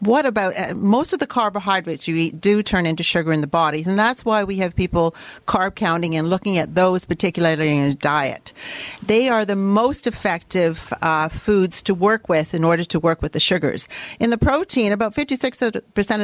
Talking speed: 200 wpm